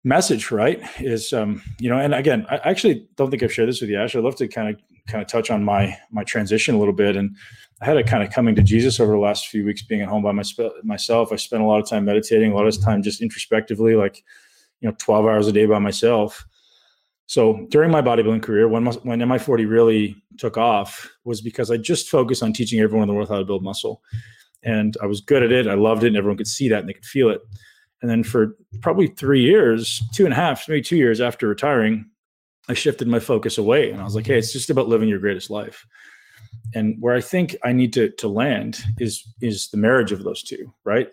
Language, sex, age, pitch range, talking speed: English, male, 20-39, 105-120 Hz, 250 wpm